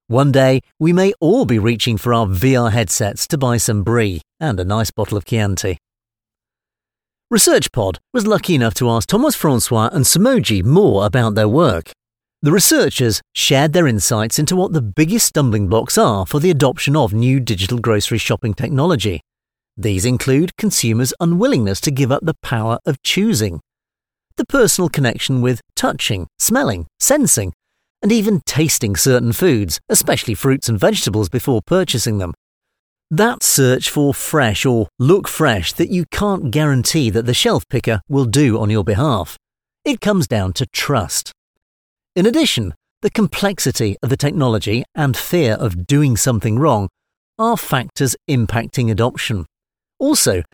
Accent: British